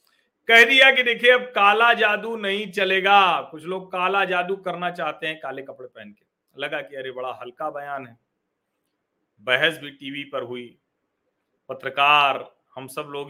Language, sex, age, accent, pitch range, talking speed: Hindi, male, 40-59, native, 140-225 Hz, 160 wpm